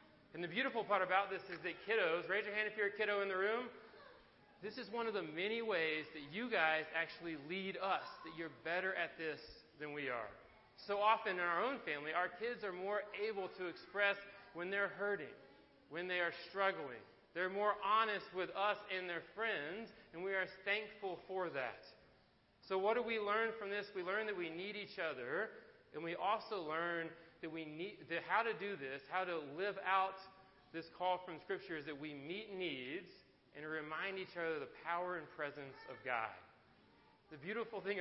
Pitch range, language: 160-205 Hz, English